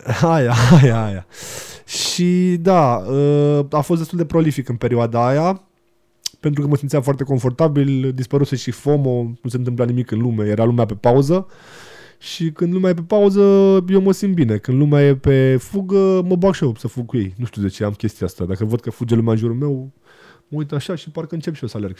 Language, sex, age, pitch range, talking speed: Romanian, male, 20-39, 115-150 Hz, 220 wpm